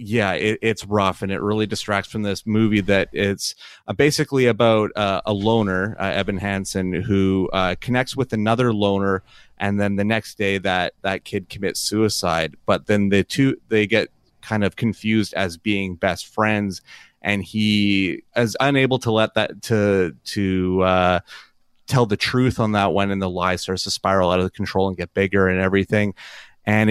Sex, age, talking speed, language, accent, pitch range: male, 30-49, 185 wpm, English, American, 95-110 Hz